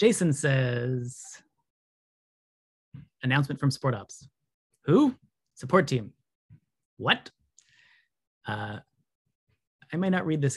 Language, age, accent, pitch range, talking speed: English, 30-49, American, 110-135 Hz, 90 wpm